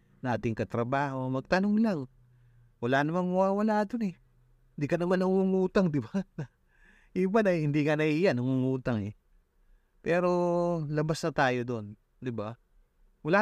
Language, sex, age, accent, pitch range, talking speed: Filipino, male, 20-39, native, 110-145 Hz, 135 wpm